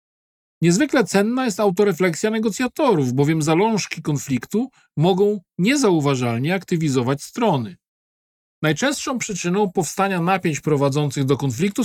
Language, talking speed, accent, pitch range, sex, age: Polish, 95 wpm, native, 140-195 Hz, male, 40-59